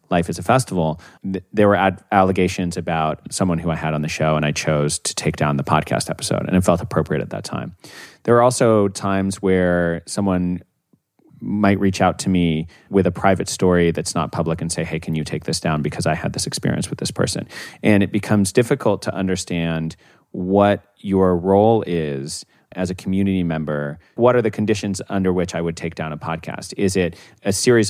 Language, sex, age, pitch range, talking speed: English, male, 30-49, 85-100 Hz, 205 wpm